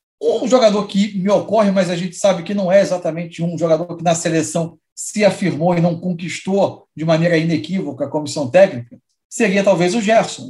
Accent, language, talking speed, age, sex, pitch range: Brazilian, Portuguese, 190 wpm, 50-69, male, 175-235 Hz